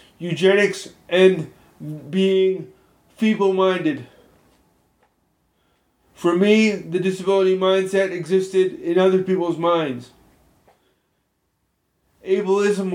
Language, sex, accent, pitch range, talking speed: English, male, American, 175-195 Hz, 70 wpm